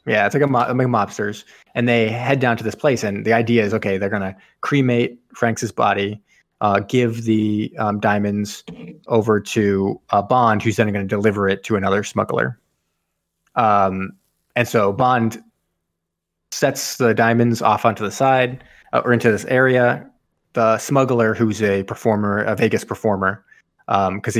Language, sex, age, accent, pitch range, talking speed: English, male, 20-39, American, 105-120 Hz, 170 wpm